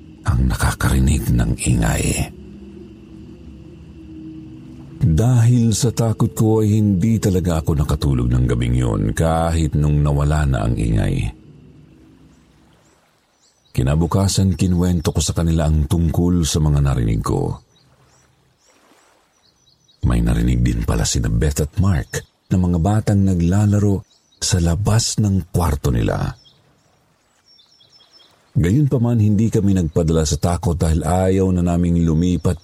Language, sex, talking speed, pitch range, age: Filipino, male, 110 wpm, 75-100 Hz, 50-69